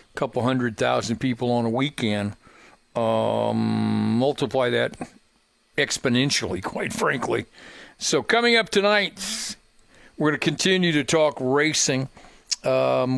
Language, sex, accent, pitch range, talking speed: English, male, American, 135-180 Hz, 115 wpm